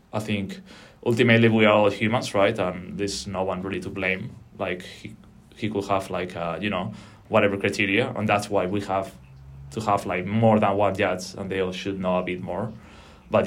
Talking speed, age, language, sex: 210 wpm, 20-39, English, male